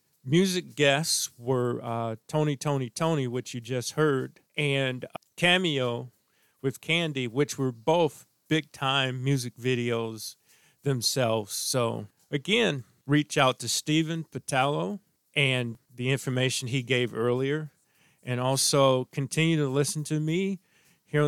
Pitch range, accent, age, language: 125-150 Hz, American, 40-59, English